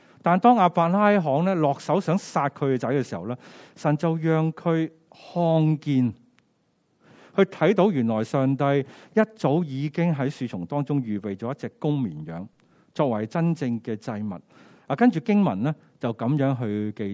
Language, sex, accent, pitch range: Chinese, male, native, 115-170 Hz